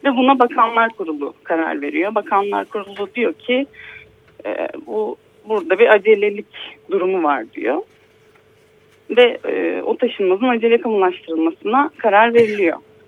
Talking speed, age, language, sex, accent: 120 wpm, 30-49, Turkish, female, native